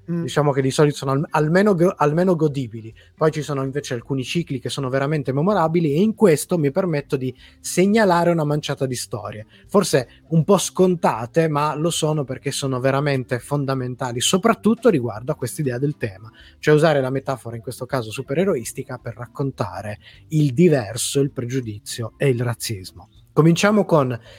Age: 20-39